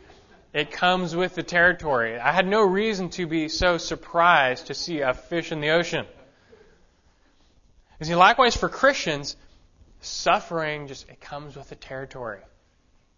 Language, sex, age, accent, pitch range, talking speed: English, male, 20-39, American, 125-170 Hz, 145 wpm